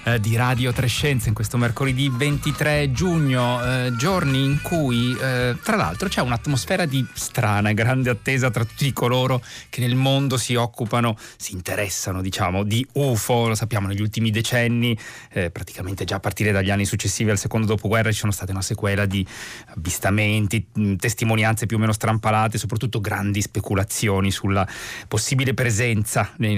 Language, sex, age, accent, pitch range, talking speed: Italian, male, 30-49, native, 105-130 Hz, 165 wpm